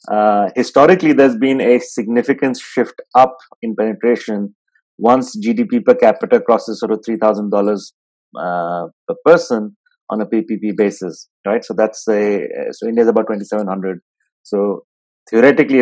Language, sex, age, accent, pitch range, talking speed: English, male, 30-49, Indian, 110-130 Hz, 150 wpm